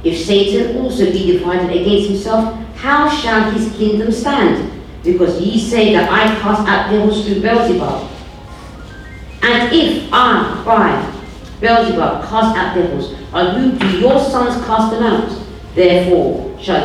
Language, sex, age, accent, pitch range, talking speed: English, female, 50-69, British, 180-235 Hz, 145 wpm